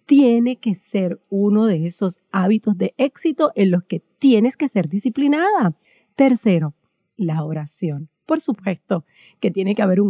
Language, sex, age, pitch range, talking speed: Spanish, female, 30-49, 180-230 Hz, 155 wpm